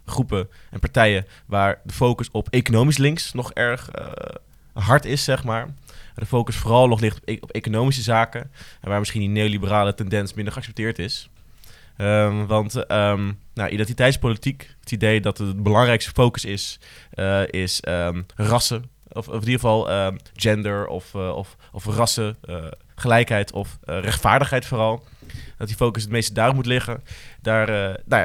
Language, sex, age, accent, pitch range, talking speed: Dutch, male, 20-39, Dutch, 100-120 Hz, 150 wpm